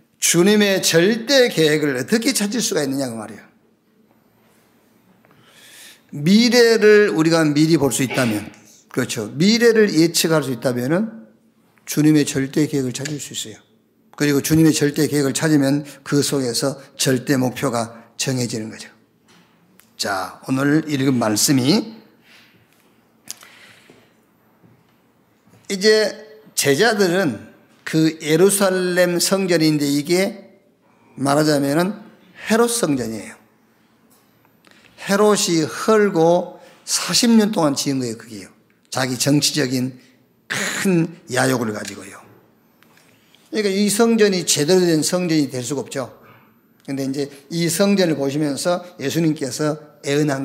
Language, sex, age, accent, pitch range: Korean, male, 50-69, native, 140-185 Hz